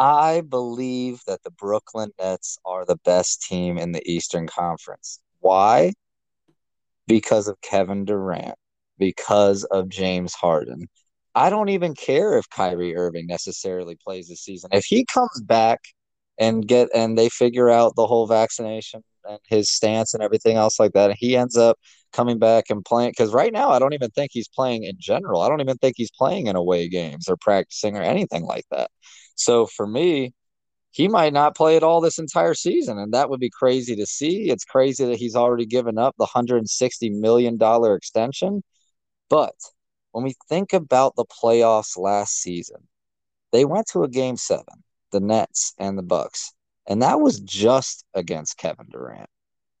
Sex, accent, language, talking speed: male, American, English, 175 wpm